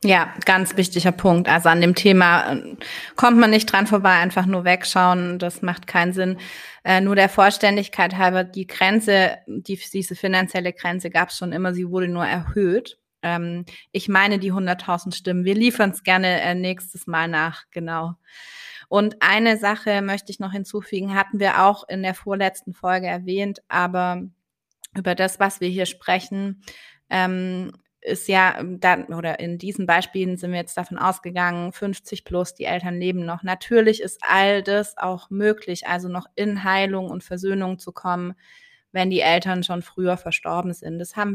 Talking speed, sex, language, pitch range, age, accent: 165 wpm, female, German, 175-195 Hz, 20-39, German